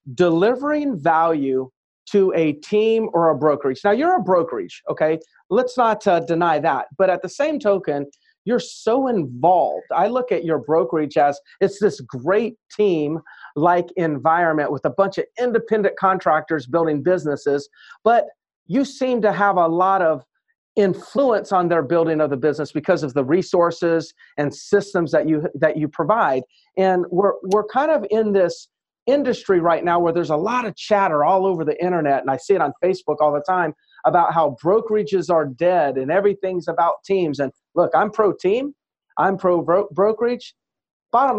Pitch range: 155-205 Hz